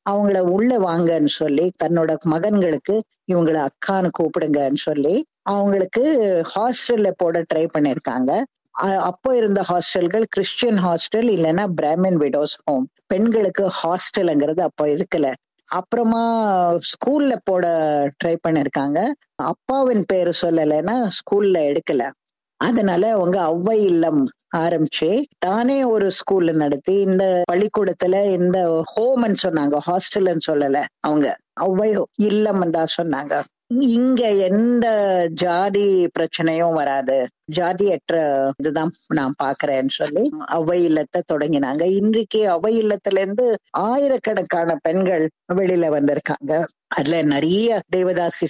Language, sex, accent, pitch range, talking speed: Tamil, female, native, 155-210 Hz, 100 wpm